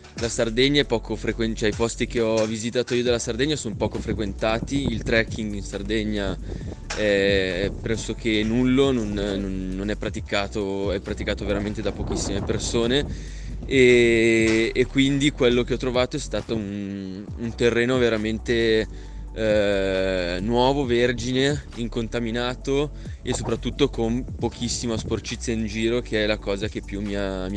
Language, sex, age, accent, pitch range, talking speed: Italian, male, 20-39, native, 100-115 Hz, 145 wpm